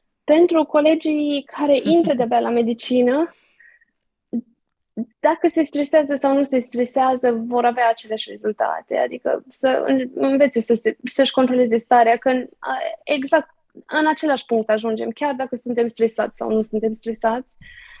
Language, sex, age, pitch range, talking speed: Romanian, female, 20-39, 230-280 Hz, 135 wpm